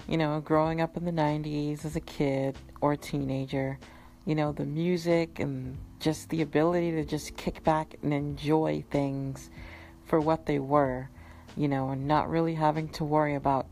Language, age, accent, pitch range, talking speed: English, 40-59, American, 135-160 Hz, 180 wpm